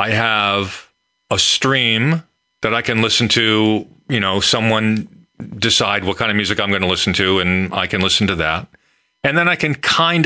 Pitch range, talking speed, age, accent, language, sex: 105-140 Hz, 195 wpm, 40-59, American, English, male